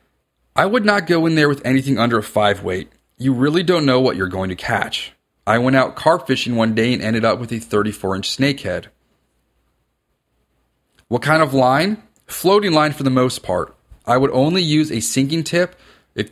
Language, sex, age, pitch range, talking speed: English, male, 30-49, 105-135 Hz, 200 wpm